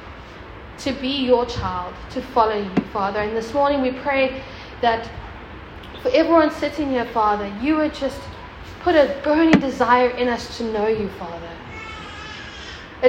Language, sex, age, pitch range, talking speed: English, female, 10-29, 240-280 Hz, 150 wpm